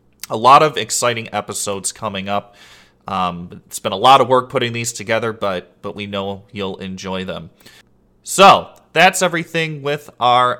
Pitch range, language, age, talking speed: 100-130 Hz, English, 30-49, 165 wpm